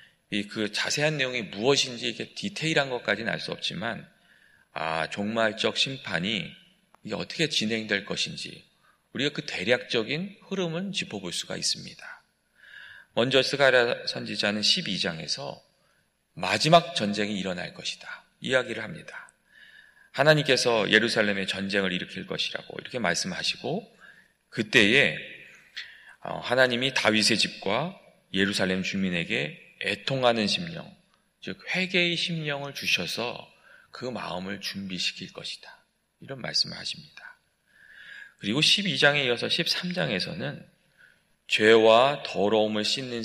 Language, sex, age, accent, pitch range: Korean, male, 40-59, native, 105-170 Hz